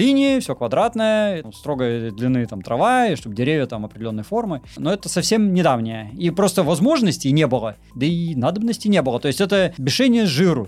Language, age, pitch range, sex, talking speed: Russian, 30-49, 130-205 Hz, male, 180 wpm